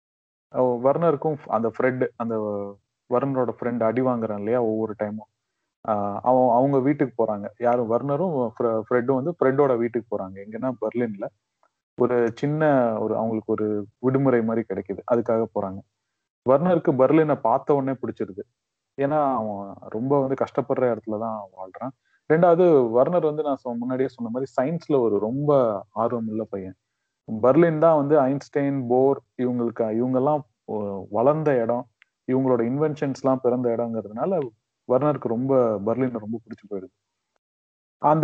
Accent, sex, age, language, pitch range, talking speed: native, male, 30-49, Tamil, 110-140 Hz, 125 wpm